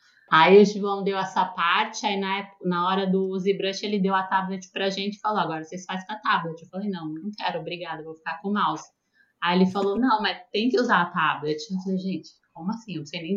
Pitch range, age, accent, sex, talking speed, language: 165-195 Hz, 20-39, Brazilian, female, 250 wpm, Portuguese